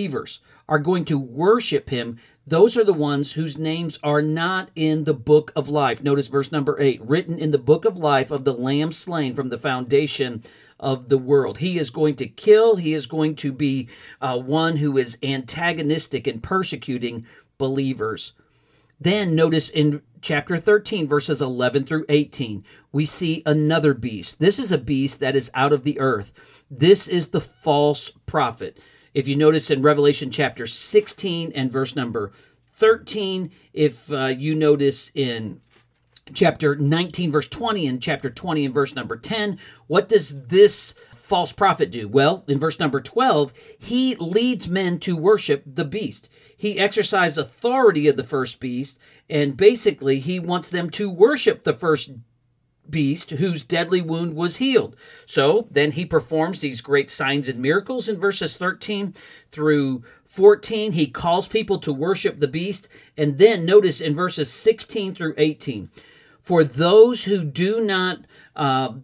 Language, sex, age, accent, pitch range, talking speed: English, male, 50-69, American, 140-185 Hz, 165 wpm